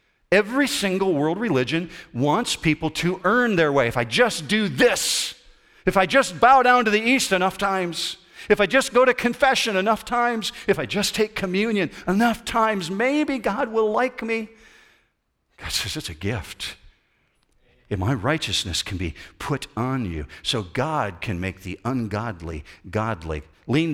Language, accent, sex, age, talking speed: English, American, male, 50-69, 165 wpm